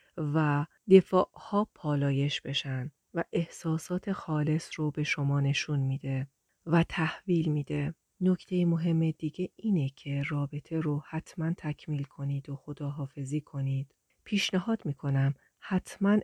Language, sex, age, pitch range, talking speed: Persian, female, 40-59, 145-170 Hz, 115 wpm